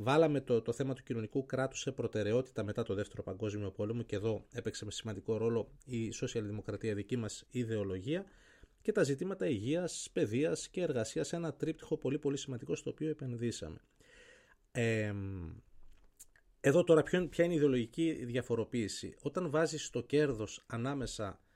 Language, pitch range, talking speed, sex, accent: Greek, 105-145 Hz, 150 wpm, male, native